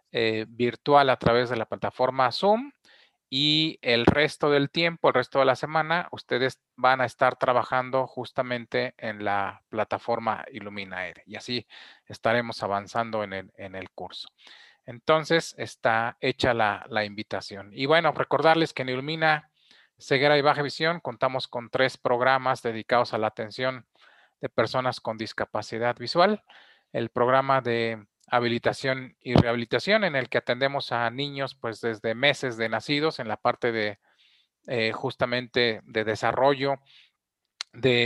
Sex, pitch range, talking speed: male, 115-140 Hz, 145 wpm